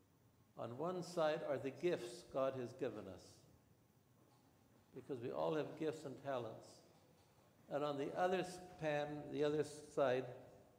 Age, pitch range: 60-79, 130-155 Hz